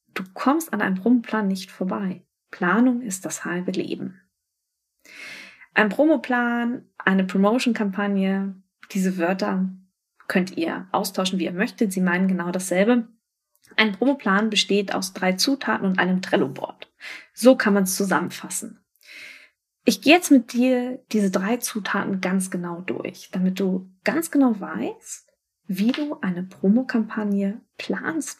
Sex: female